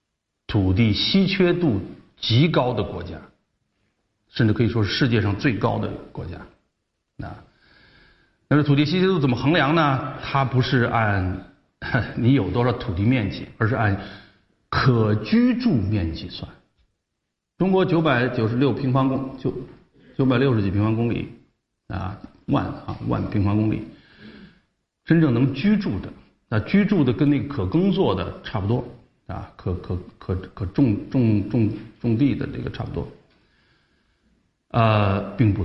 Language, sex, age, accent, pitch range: Chinese, male, 50-69, native, 100-135 Hz